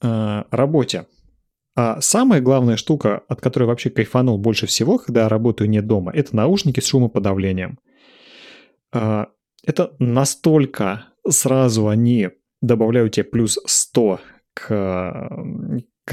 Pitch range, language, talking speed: 115-150 Hz, Russian, 110 wpm